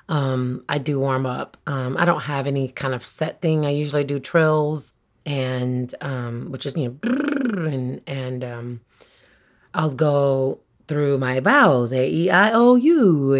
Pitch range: 130-160 Hz